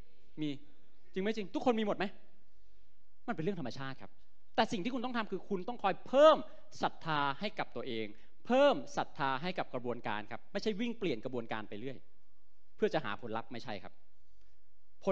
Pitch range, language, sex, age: 100-170 Hz, Thai, male, 30-49